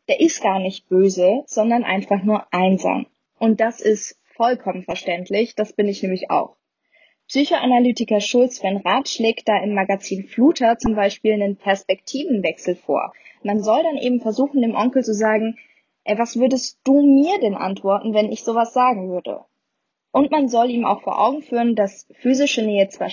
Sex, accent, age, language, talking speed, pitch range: female, German, 20-39, German, 170 wpm, 200-260 Hz